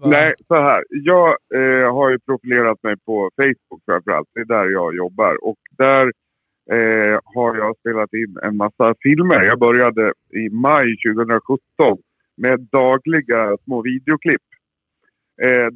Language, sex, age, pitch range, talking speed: Swedish, male, 50-69, 115-145 Hz, 145 wpm